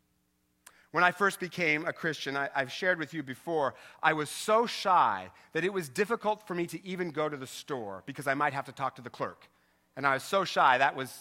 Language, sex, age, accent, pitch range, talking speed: English, male, 40-59, American, 140-195 Hz, 230 wpm